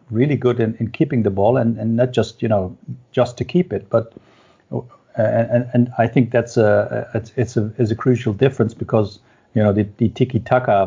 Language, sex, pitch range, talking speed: English, male, 110-125 Hz, 210 wpm